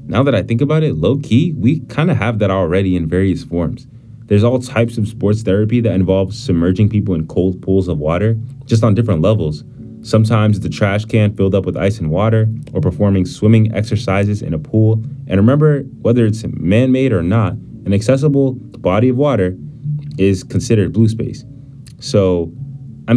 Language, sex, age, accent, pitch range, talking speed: English, male, 20-39, American, 100-130 Hz, 180 wpm